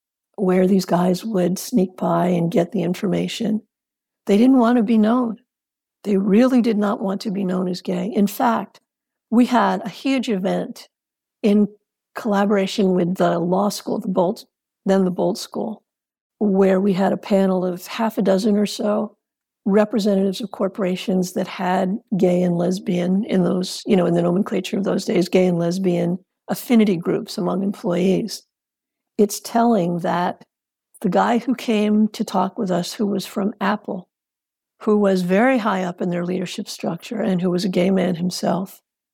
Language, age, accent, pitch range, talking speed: English, 60-79, American, 185-215 Hz, 170 wpm